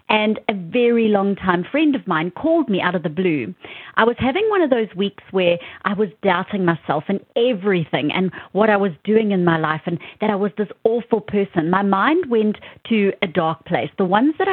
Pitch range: 175-225 Hz